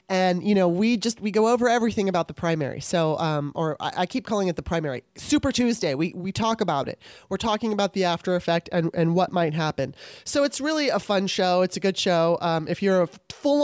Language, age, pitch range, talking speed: English, 30-49, 175-225 Hz, 240 wpm